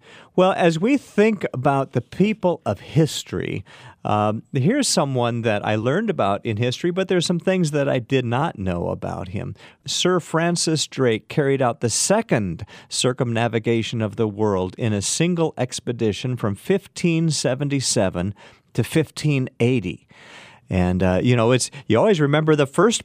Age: 50-69